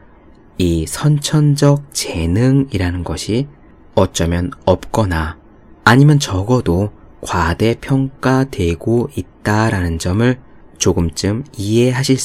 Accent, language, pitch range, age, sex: native, Korean, 90-120 Hz, 20-39, male